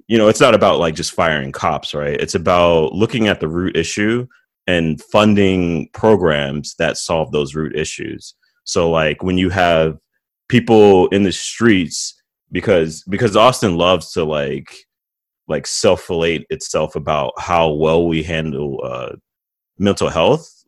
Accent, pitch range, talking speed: American, 80-100 Hz, 150 wpm